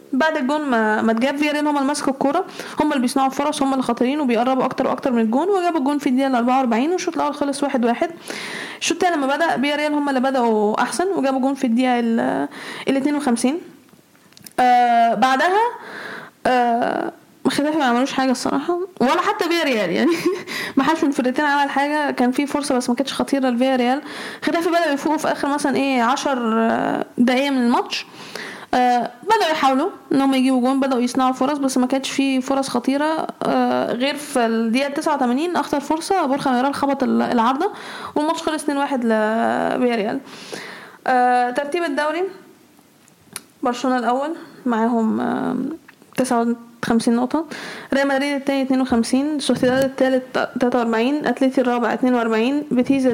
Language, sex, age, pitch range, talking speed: Arabic, female, 10-29, 245-290 Hz, 155 wpm